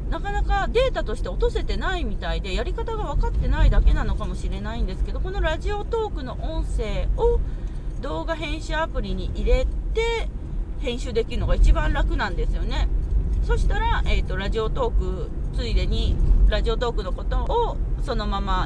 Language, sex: Japanese, female